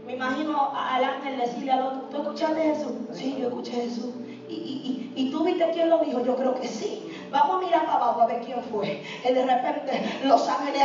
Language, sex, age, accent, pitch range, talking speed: Spanish, female, 20-39, American, 255-395 Hz, 220 wpm